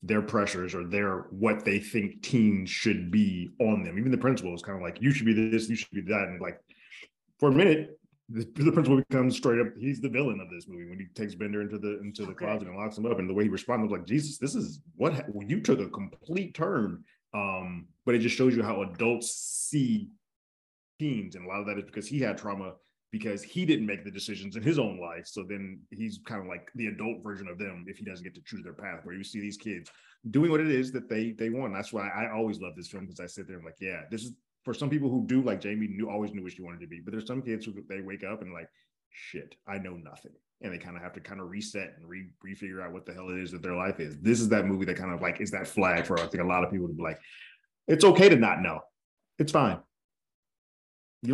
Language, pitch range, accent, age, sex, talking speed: English, 95-125 Hz, American, 20-39, male, 270 wpm